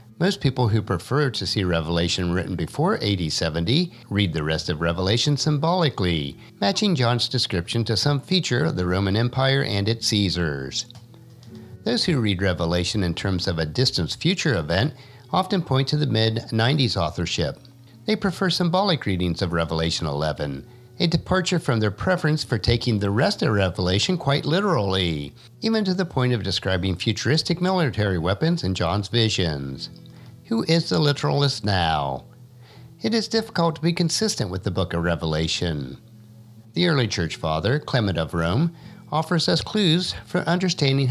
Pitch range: 95-155 Hz